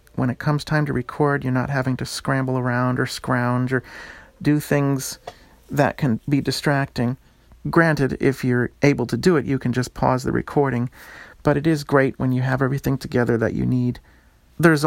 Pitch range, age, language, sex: 120-145 Hz, 40-59, English, male